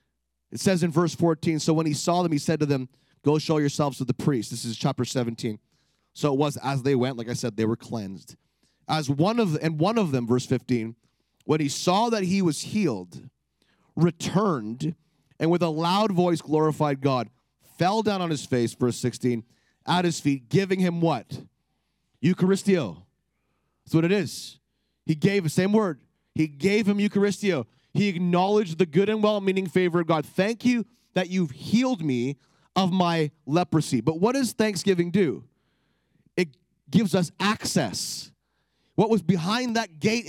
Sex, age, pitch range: male, 30-49, 140-190 Hz